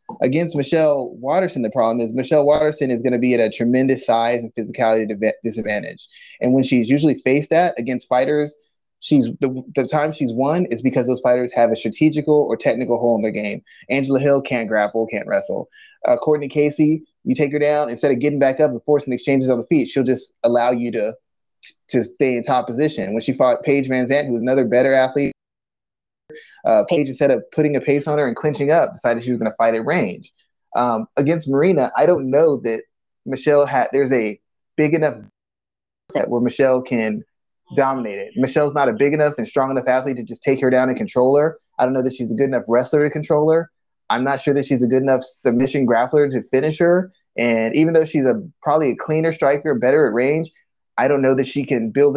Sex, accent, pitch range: male, American, 125-150 Hz